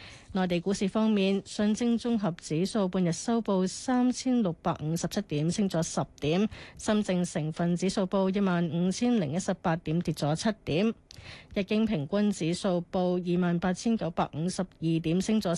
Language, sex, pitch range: Chinese, female, 165-210 Hz